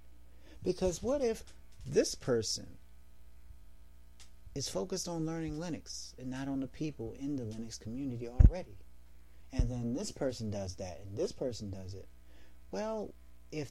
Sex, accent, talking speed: male, American, 145 wpm